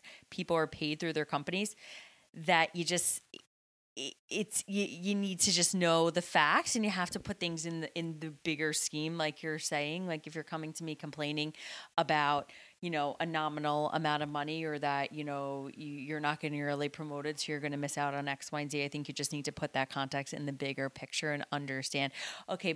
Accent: American